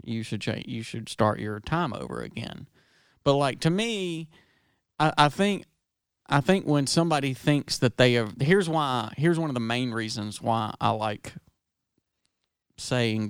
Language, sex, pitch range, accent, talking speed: English, male, 115-140 Hz, American, 165 wpm